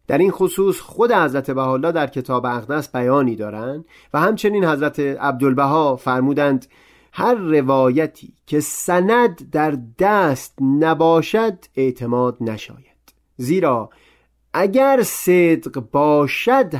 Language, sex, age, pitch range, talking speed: Persian, male, 30-49, 120-160 Hz, 105 wpm